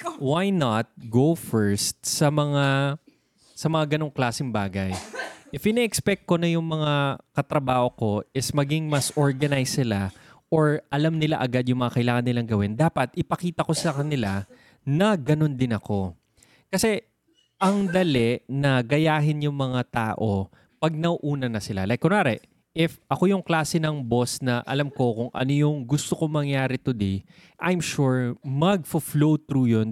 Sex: male